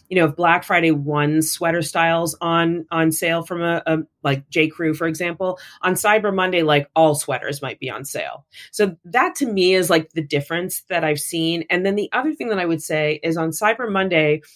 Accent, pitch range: American, 150-185 Hz